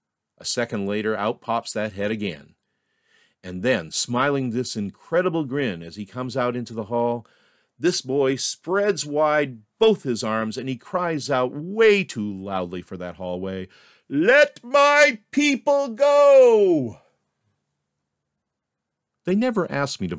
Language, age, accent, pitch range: English, 40-59, American, 105-155 Hz